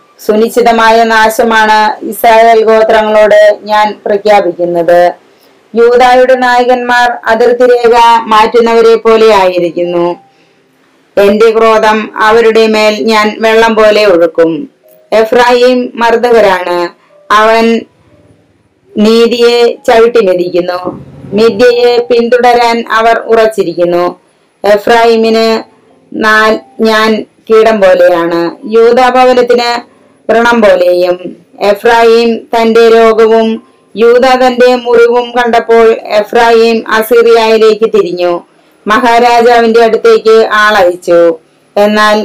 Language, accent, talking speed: Malayalam, native, 70 wpm